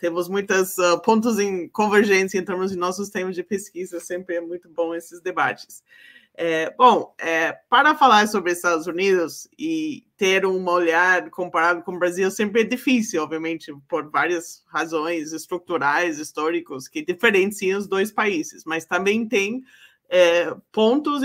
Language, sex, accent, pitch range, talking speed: English, male, Brazilian, 180-250 Hz, 150 wpm